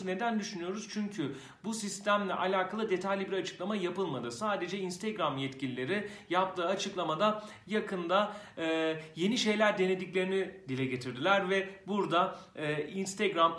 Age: 40-59